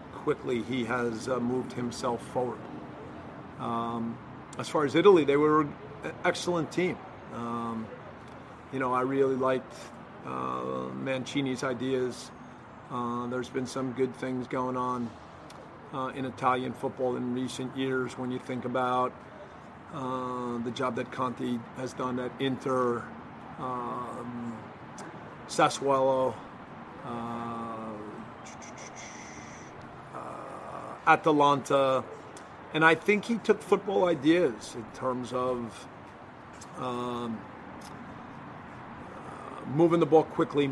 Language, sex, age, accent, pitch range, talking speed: English, male, 40-59, American, 125-145 Hz, 105 wpm